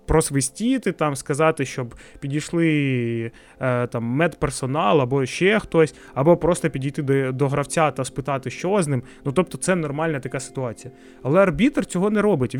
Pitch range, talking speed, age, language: 135-190 Hz, 150 wpm, 20-39, Ukrainian